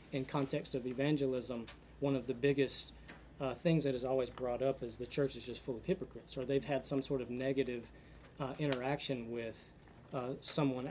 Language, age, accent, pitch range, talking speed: English, 30-49, American, 130-150 Hz, 195 wpm